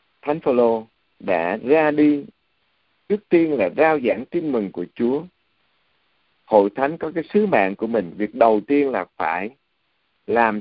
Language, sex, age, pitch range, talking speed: Vietnamese, male, 60-79, 105-150 Hz, 165 wpm